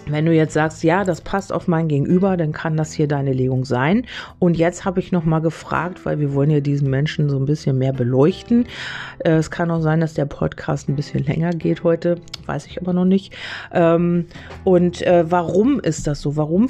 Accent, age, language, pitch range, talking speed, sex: German, 40-59, German, 140-170 Hz, 205 wpm, female